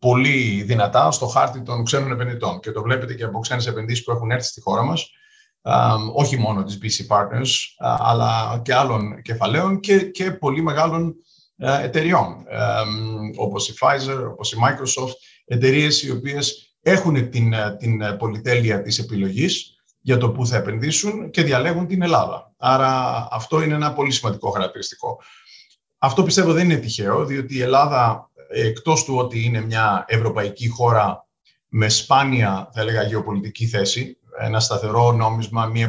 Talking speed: 150 wpm